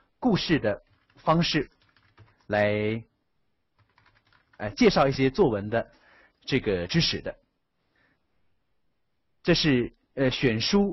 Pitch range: 115-155 Hz